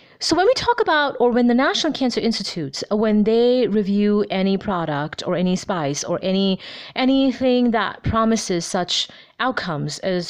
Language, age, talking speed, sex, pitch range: English, 30-49, 155 wpm, female, 185-240 Hz